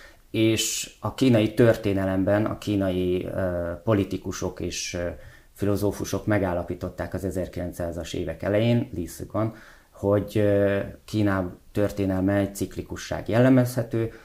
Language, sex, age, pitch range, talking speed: Hungarian, male, 30-49, 95-110 Hz, 90 wpm